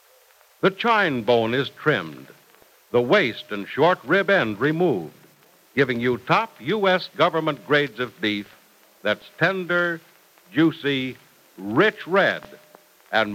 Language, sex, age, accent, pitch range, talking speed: English, male, 60-79, American, 120-185 Hz, 115 wpm